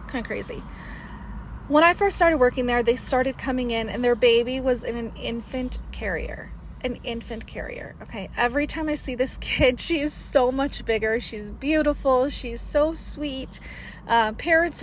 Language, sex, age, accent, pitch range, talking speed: English, female, 30-49, American, 230-290 Hz, 175 wpm